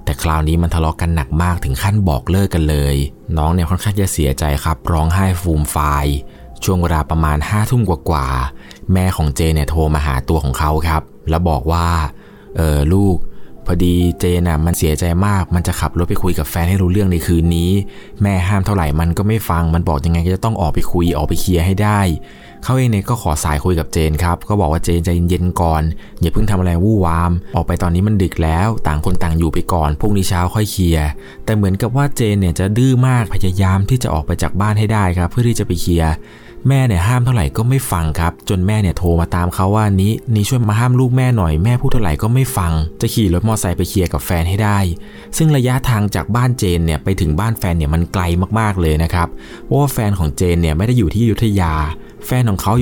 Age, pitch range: 20-39, 80-105 Hz